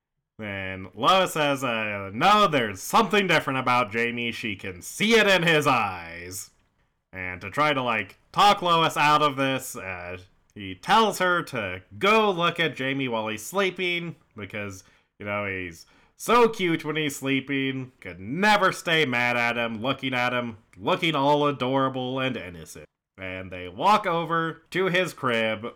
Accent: American